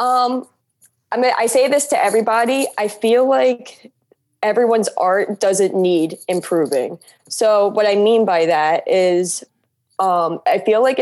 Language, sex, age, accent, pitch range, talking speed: English, female, 20-39, American, 170-215 Hz, 145 wpm